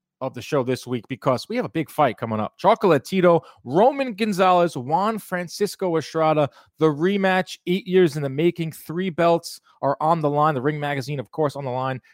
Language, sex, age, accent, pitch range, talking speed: English, male, 30-49, American, 130-180 Hz, 205 wpm